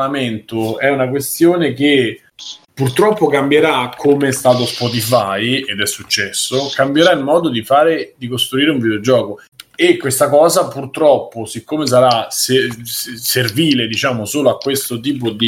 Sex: male